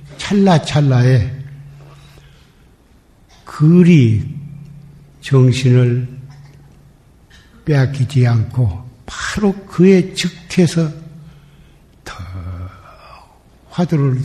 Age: 60-79